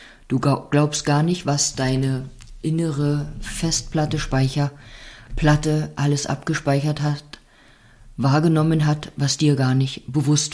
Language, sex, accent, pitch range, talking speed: German, female, German, 130-155 Hz, 110 wpm